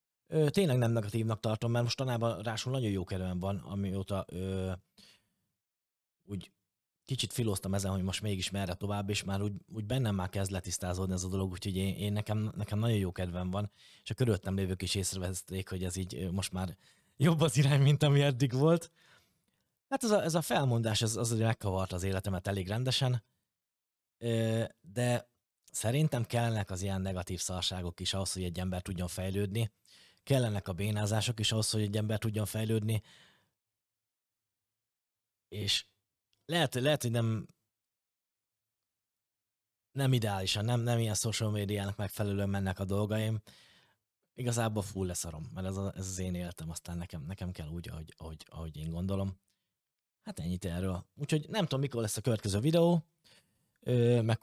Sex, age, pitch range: male, 20-39, 95-120 Hz